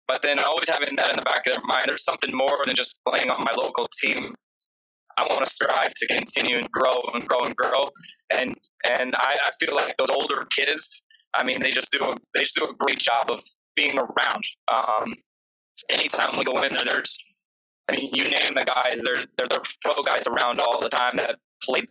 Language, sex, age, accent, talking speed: English, male, 20-39, American, 220 wpm